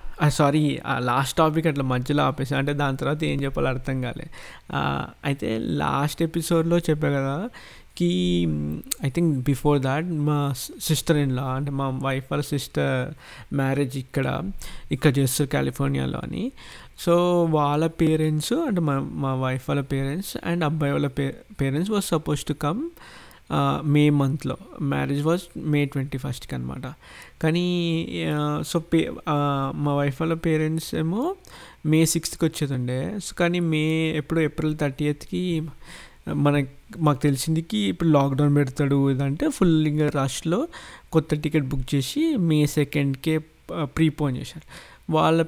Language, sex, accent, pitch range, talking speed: Telugu, male, native, 140-165 Hz, 130 wpm